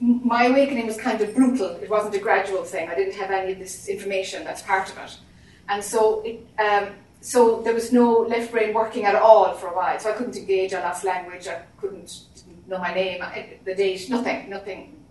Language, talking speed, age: English, 220 wpm, 30-49